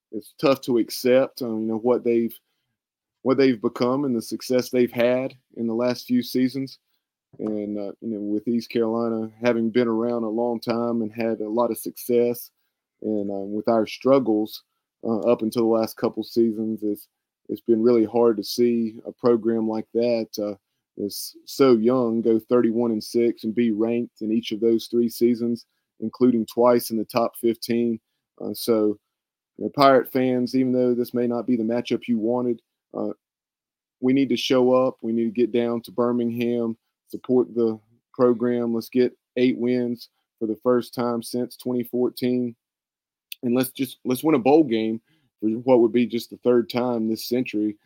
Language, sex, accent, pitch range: English, male, American, 110-125 Hz